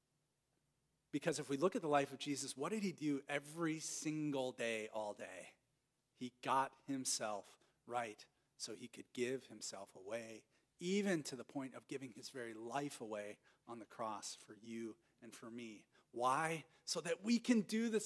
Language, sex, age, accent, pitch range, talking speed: English, male, 40-59, American, 130-180 Hz, 175 wpm